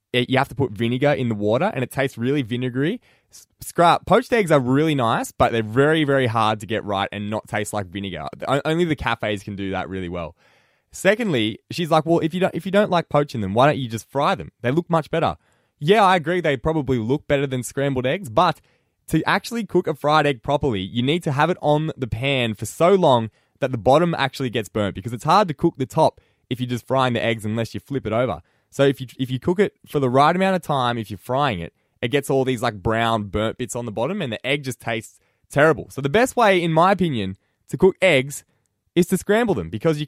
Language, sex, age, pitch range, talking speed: English, male, 20-39, 115-170 Hz, 250 wpm